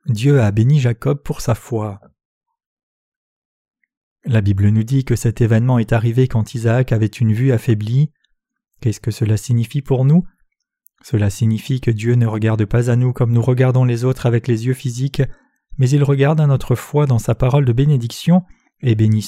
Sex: male